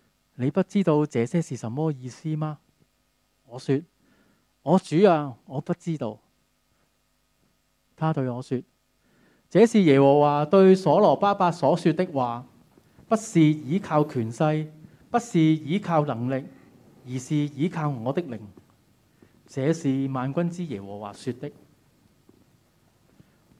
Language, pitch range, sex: Chinese, 130-180 Hz, male